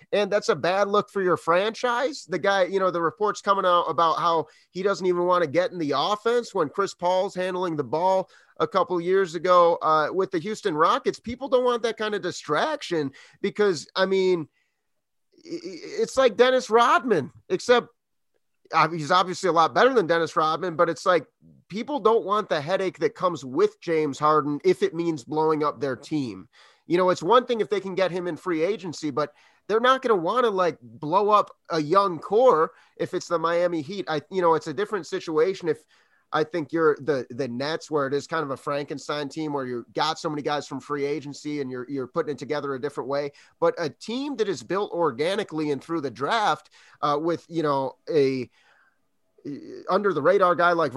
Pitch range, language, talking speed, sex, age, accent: 150-200 Hz, English, 210 wpm, male, 30-49, American